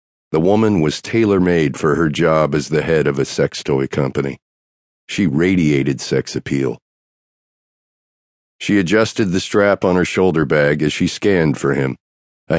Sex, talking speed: male, 155 wpm